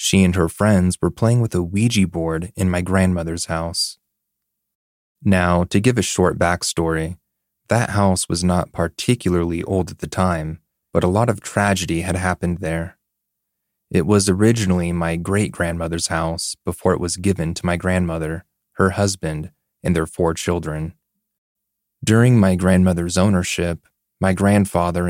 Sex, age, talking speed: male, 30-49, 150 wpm